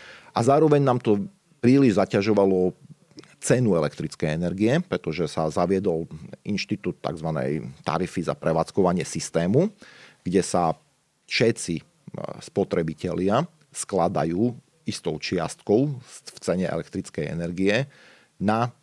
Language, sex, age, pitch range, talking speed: Slovak, male, 40-59, 85-120 Hz, 95 wpm